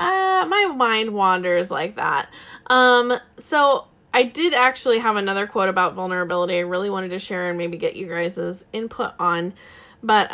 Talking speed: 170 wpm